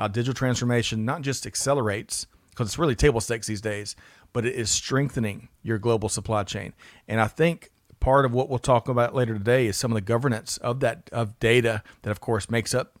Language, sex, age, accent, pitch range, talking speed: English, male, 40-59, American, 110-125 Hz, 210 wpm